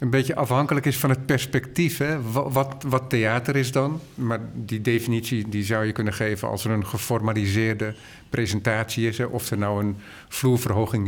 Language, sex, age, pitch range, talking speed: Dutch, male, 50-69, 105-125 Hz, 185 wpm